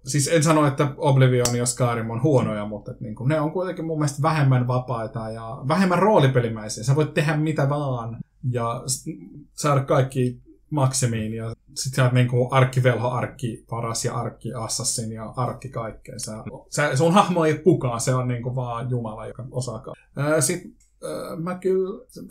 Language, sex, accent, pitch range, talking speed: Finnish, male, native, 120-145 Hz, 160 wpm